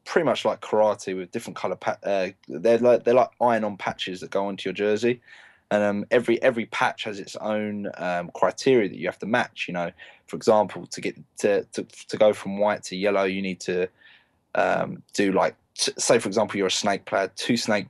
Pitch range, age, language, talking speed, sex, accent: 95-115 Hz, 20-39, English, 210 wpm, male, British